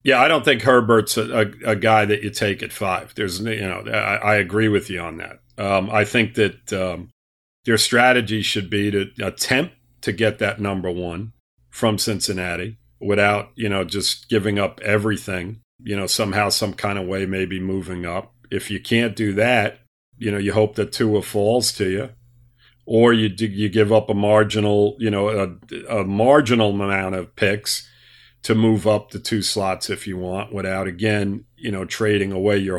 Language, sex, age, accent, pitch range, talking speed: English, male, 40-59, American, 100-120 Hz, 190 wpm